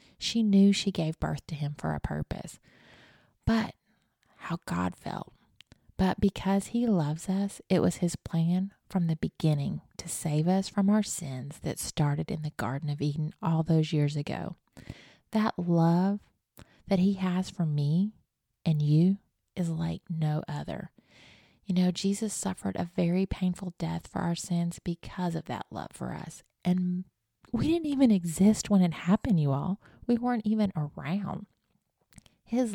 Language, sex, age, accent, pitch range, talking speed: English, female, 30-49, American, 160-195 Hz, 160 wpm